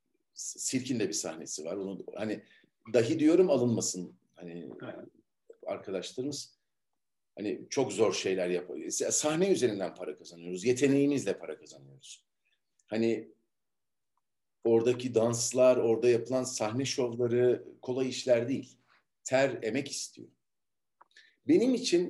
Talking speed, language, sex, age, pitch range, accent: 105 wpm, Turkish, male, 50-69, 115-155 Hz, native